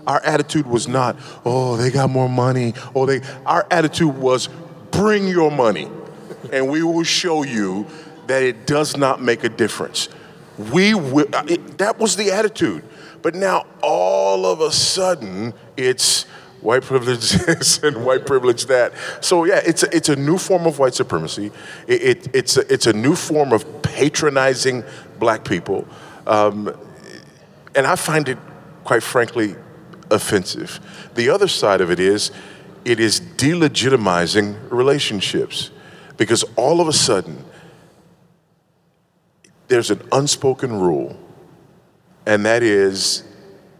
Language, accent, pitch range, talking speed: English, American, 120-165 Hz, 140 wpm